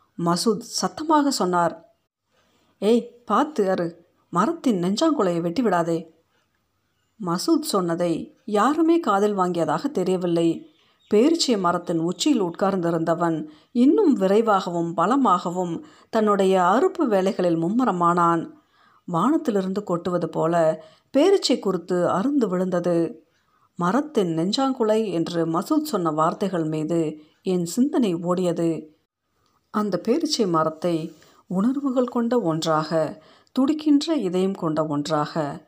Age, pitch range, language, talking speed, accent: 50-69, 170-245 Hz, Tamil, 85 wpm, native